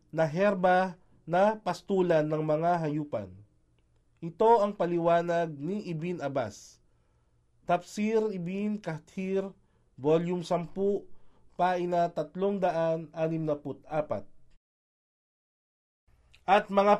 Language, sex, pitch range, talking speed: Filipino, male, 145-190 Hz, 85 wpm